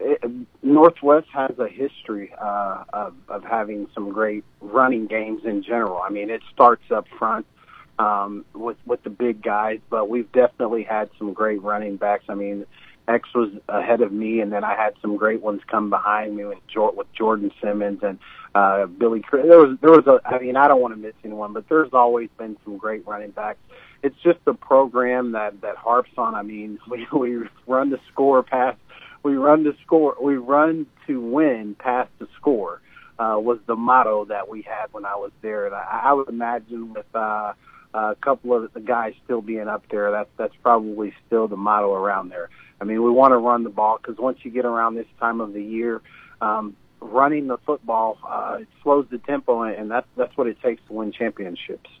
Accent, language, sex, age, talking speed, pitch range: American, English, male, 40-59, 205 wpm, 105-125 Hz